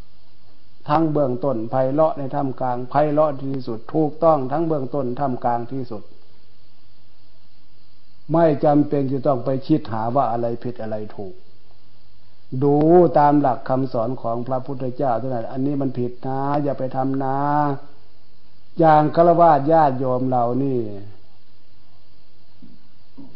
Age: 60-79